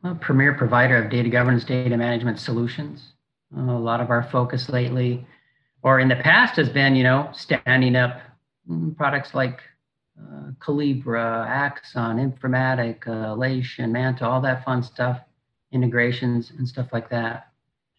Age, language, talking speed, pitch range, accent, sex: 40-59, English, 145 wpm, 120-135 Hz, American, male